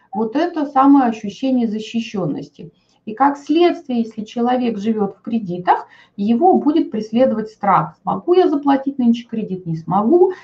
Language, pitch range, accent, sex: Russian, 225-285 Hz, native, female